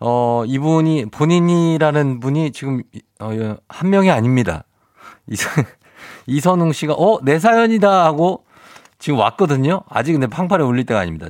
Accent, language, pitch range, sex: native, Korean, 115-180 Hz, male